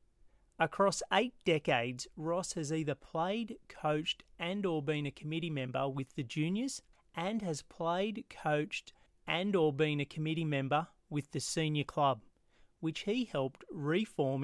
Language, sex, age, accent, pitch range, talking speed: English, male, 30-49, Australian, 140-170 Hz, 145 wpm